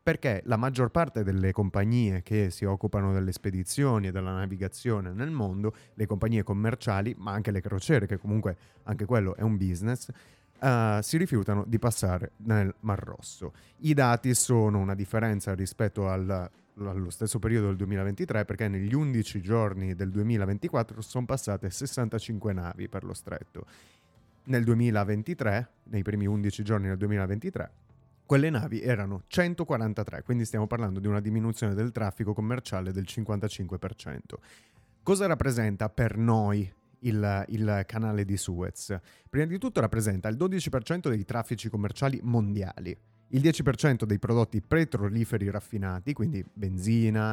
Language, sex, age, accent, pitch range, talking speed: Italian, male, 30-49, native, 100-120 Hz, 140 wpm